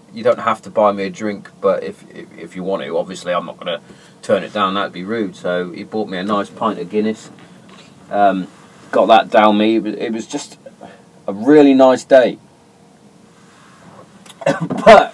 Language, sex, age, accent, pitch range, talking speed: English, male, 30-49, British, 100-155 Hz, 195 wpm